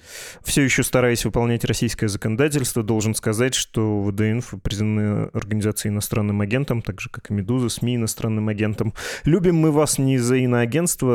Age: 20-39